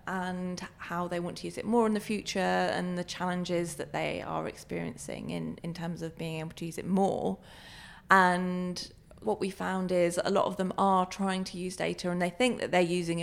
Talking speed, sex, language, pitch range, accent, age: 220 wpm, female, English, 165-185 Hz, British, 20-39